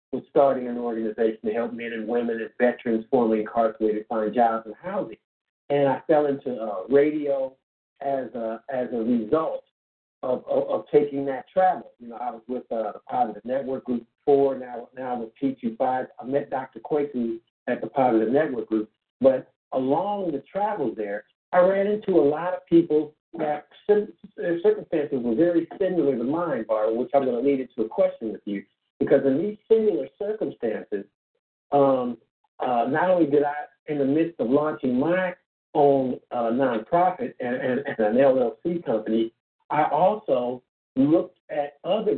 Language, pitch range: English, 125-180 Hz